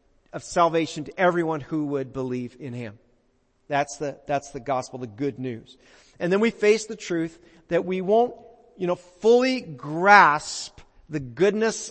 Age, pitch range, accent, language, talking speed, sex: 40-59, 135-175 Hz, American, English, 160 wpm, male